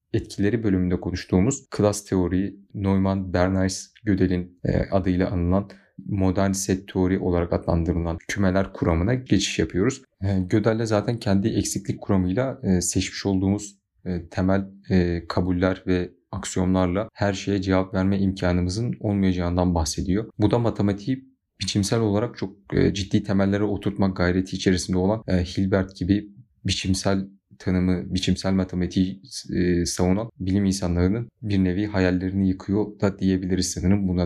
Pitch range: 90-100 Hz